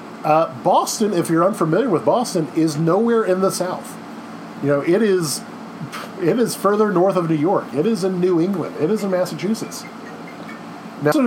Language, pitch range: English, 140-190 Hz